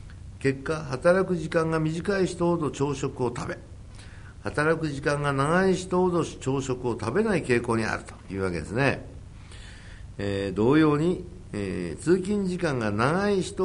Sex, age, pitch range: male, 60-79, 100-150 Hz